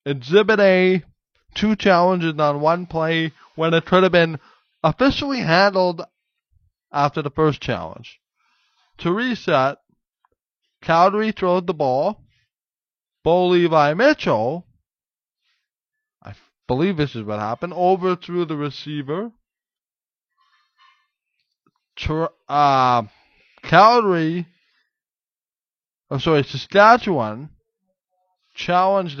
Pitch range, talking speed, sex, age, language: 155-205 Hz, 85 wpm, male, 20-39, English